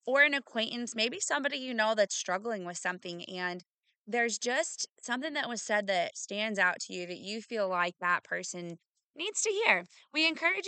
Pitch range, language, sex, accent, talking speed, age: 185-250 Hz, English, female, American, 190 wpm, 20-39